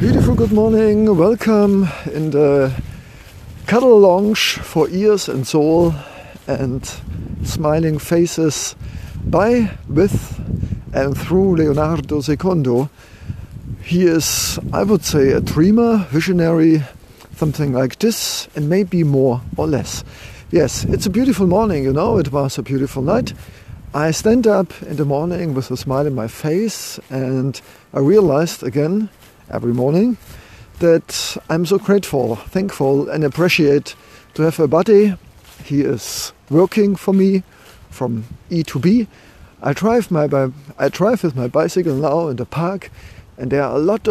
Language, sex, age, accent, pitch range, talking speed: English, male, 50-69, German, 125-185 Hz, 140 wpm